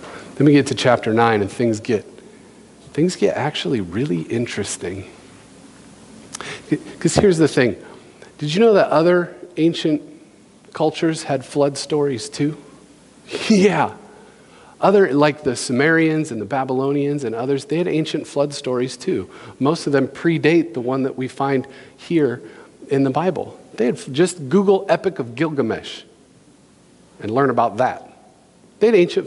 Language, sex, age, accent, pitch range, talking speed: English, male, 40-59, American, 130-165 Hz, 150 wpm